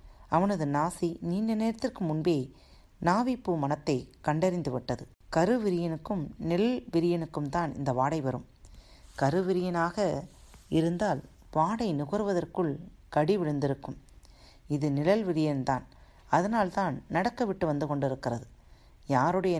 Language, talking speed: Tamil, 100 wpm